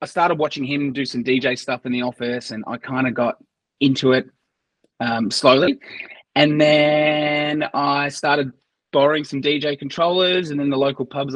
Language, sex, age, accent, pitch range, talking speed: English, male, 20-39, Australian, 120-150 Hz, 175 wpm